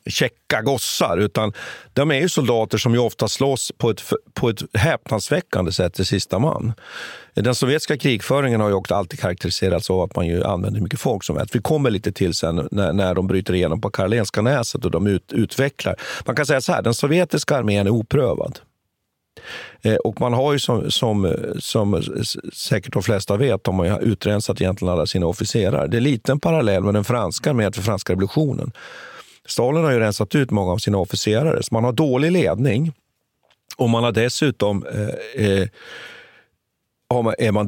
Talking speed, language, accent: 185 wpm, Swedish, native